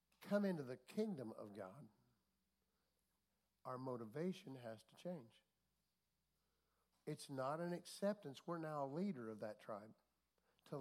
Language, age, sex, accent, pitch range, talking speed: English, 60-79, male, American, 130-170 Hz, 130 wpm